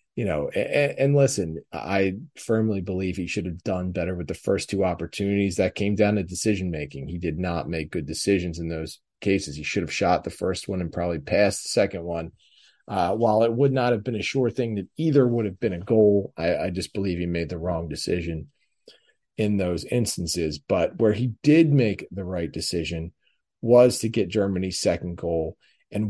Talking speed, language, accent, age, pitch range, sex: 205 wpm, English, American, 30-49, 85-110 Hz, male